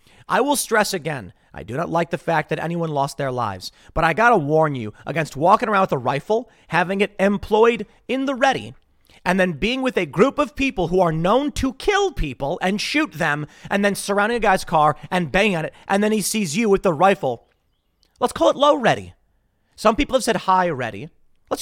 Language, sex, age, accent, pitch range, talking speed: English, male, 30-49, American, 140-215 Hz, 220 wpm